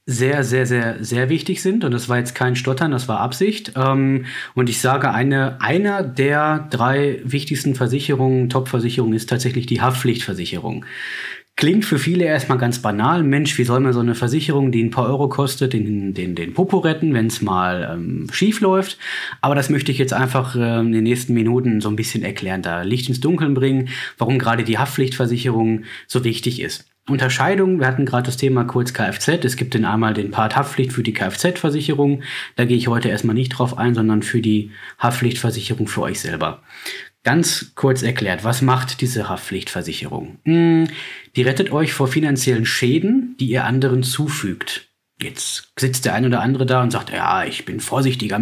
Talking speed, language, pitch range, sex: 180 wpm, German, 115-140 Hz, male